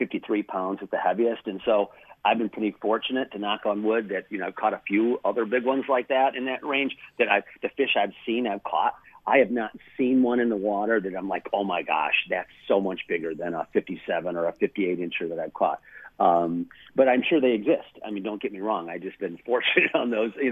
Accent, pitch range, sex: American, 95-115 Hz, male